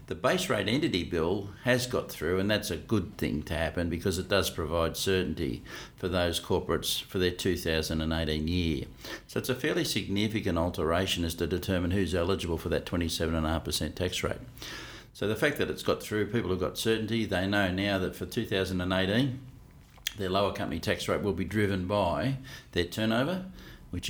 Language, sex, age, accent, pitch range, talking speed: English, male, 60-79, Australian, 85-105 Hz, 180 wpm